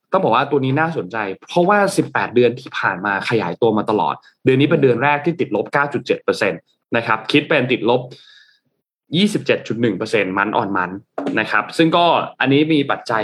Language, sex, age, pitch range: Thai, male, 20-39, 110-150 Hz